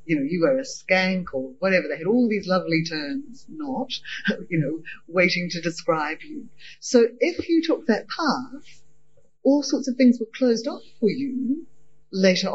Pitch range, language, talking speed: 170-250 Hz, English, 175 wpm